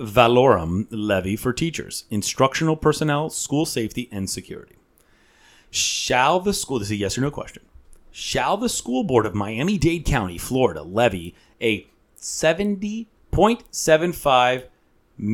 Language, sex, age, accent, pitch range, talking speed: English, male, 30-49, American, 105-150 Hz, 120 wpm